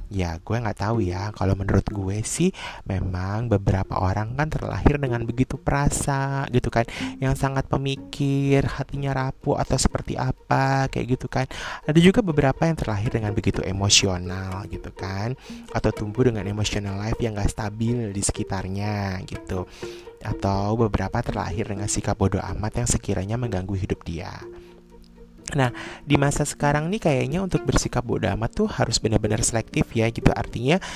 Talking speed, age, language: 155 wpm, 20-39, Indonesian